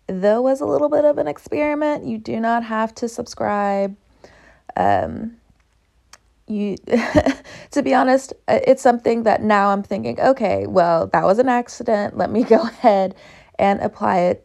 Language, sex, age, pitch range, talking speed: English, female, 20-39, 185-220 Hz, 160 wpm